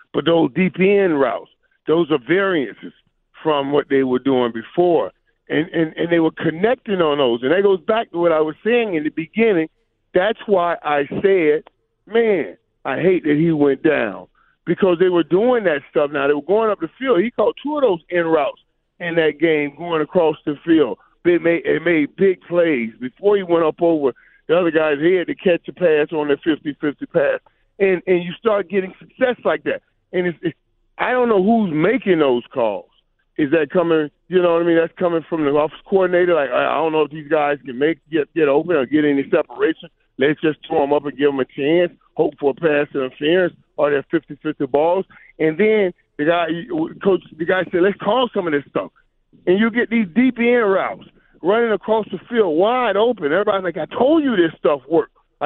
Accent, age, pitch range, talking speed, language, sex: American, 40-59, 155-205 Hz, 220 wpm, English, male